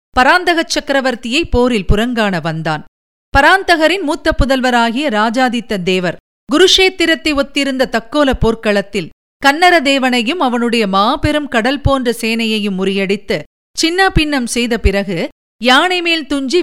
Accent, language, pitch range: native, Tamil, 210-295 Hz